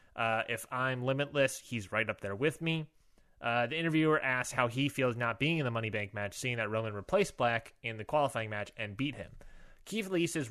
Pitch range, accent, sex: 110-145 Hz, American, male